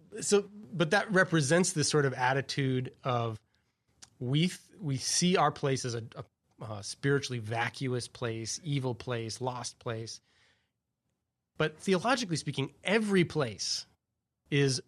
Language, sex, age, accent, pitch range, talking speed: English, male, 30-49, American, 110-145 Hz, 130 wpm